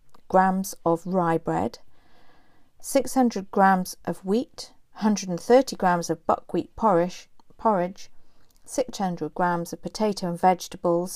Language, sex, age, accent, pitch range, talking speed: English, female, 50-69, British, 170-225 Hz, 100 wpm